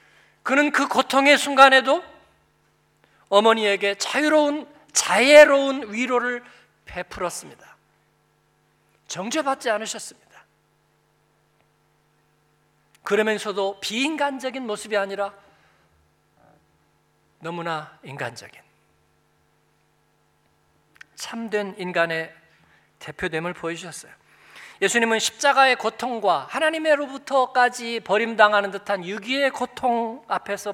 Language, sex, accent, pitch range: Korean, male, native, 200-270 Hz